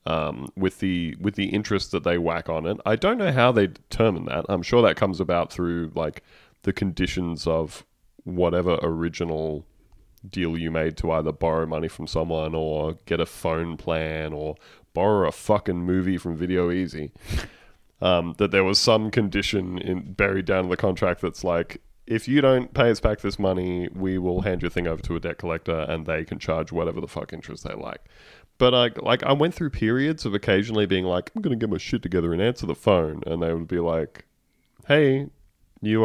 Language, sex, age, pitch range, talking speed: English, male, 20-39, 80-105 Hz, 205 wpm